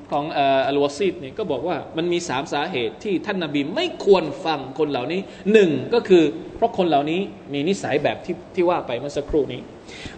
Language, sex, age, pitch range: Thai, male, 20-39, 135-185 Hz